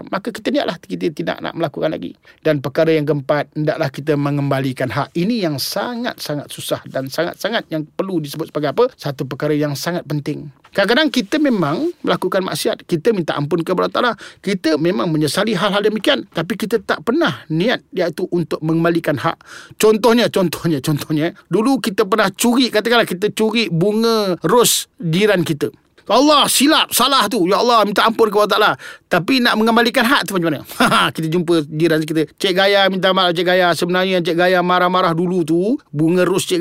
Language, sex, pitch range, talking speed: Malay, male, 160-220 Hz, 175 wpm